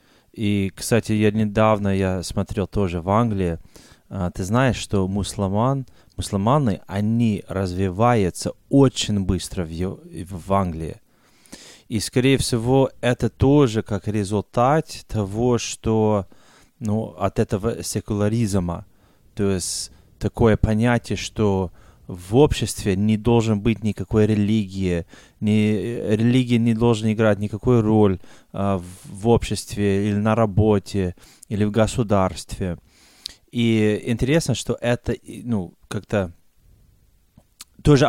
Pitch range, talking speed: 95-115 Hz, 110 wpm